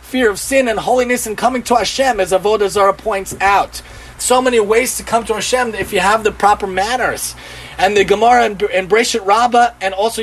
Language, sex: English, male